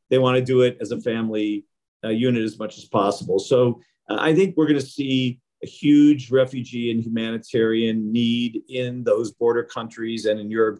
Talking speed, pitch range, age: 185 wpm, 110-130 Hz, 40-59